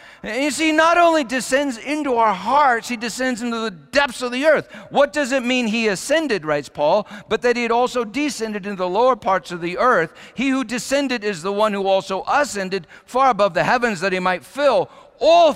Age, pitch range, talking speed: 50-69, 200-285 Hz, 210 wpm